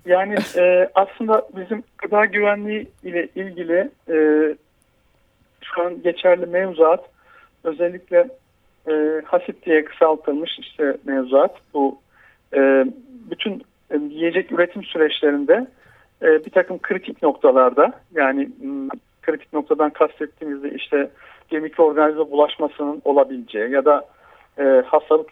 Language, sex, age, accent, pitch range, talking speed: Turkish, male, 50-69, native, 150-220 Hz, 110 wpm